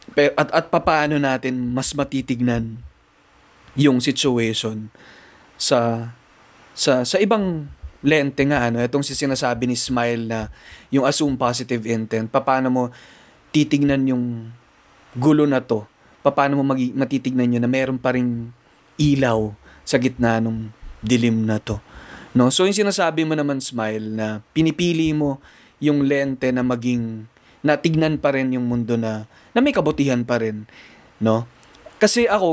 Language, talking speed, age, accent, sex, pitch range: Filipino, 140 wpm, 20-39, native, male, 120-155 Hz